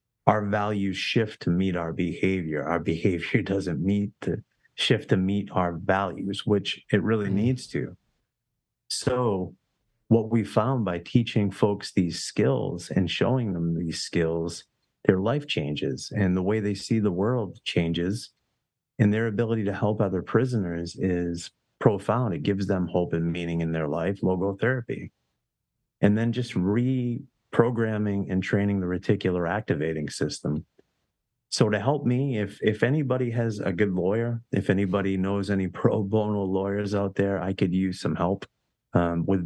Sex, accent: male, American